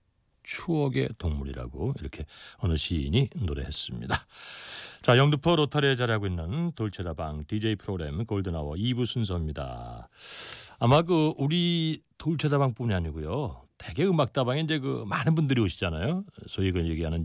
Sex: male